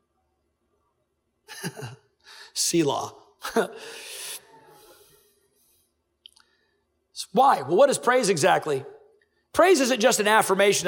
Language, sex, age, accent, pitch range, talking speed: English, male, 40-59, American, 200-320 Hz, 75 wpm